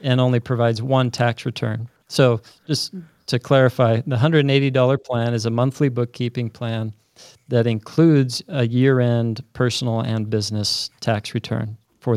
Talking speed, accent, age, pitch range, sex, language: 140 wpm, American, 40-59, 115-135 Hz, male, English